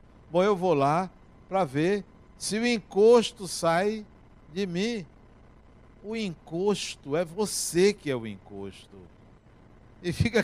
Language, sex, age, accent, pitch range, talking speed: Portuguese, male, 60-79, Brazilian, 120-195 Hz, 125 wpm